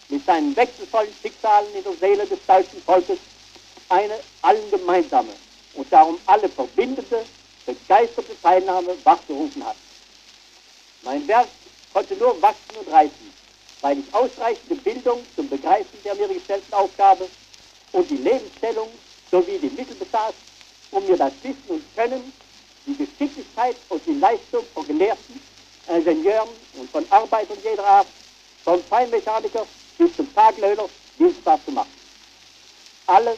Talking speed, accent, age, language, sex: 130 wpm, German, 60-79, German, male